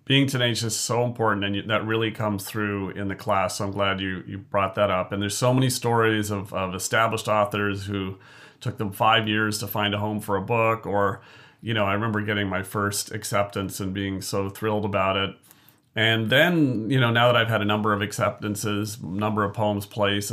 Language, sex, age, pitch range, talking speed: English, male, 40-59, 100-120 Hz, 215 wpm